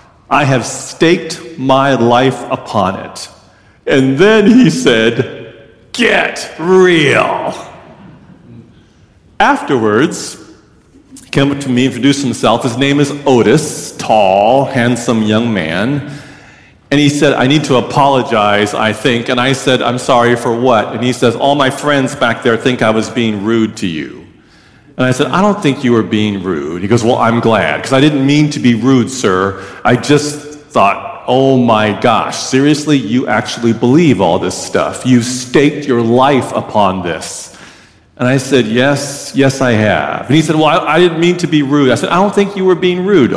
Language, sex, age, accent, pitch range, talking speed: English, male, 40-59, American, 120-145 Hz, 180 wpm